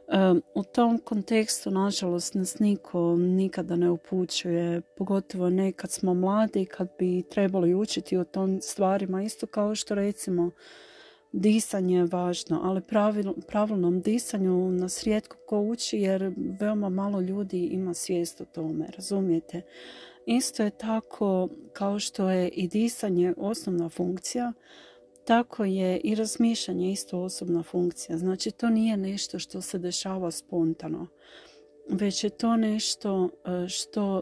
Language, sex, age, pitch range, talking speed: Croatian, female, 40-59, 175-210 Hz, 130 wpm